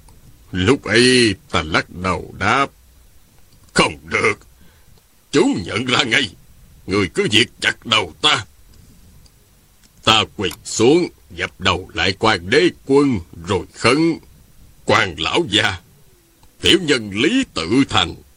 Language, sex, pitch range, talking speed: Vietnamese, male, 95-155 Hz, 120 wpm